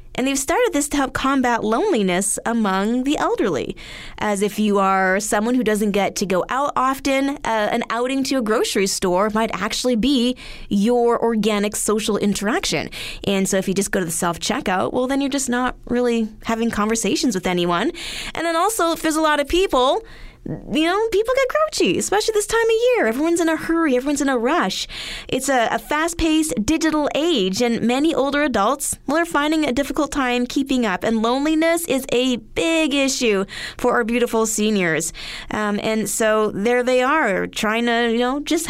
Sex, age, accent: female, 20-39, American